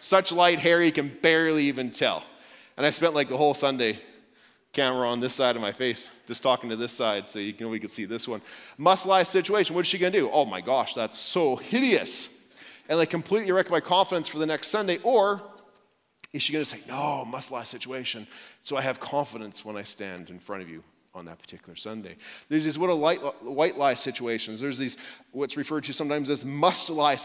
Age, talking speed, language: 30-49, 225 wpm, English